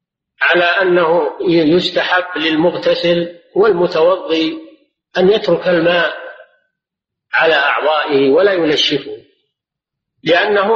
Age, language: 50-69, Arabic